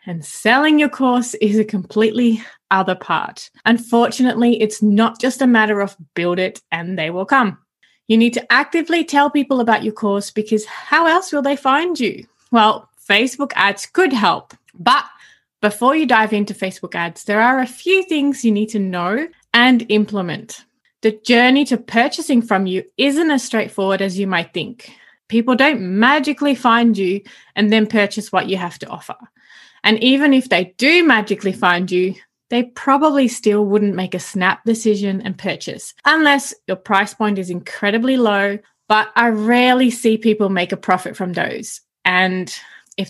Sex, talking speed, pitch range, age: female, 175 wpm, 195-250 Hz, 20-39